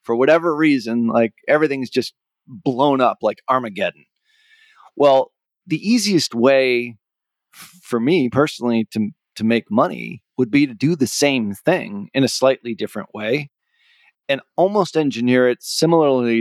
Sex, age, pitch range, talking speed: male, 30-49, 115-145 Hz, 145 wpm